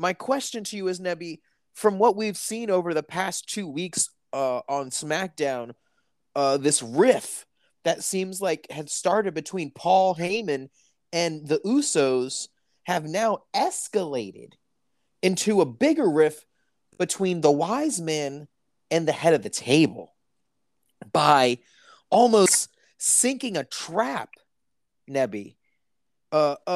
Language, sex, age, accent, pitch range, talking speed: English, male, 30-49, American, 155-215 Hz, 125 wpm